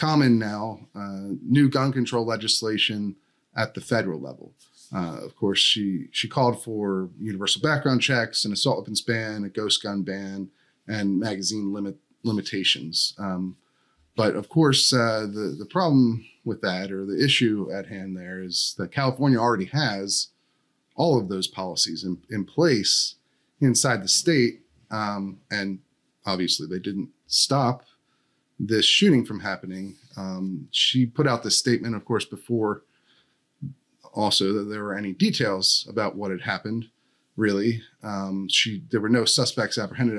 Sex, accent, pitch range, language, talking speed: male, American, 100-125 Hz, English, 150 wpm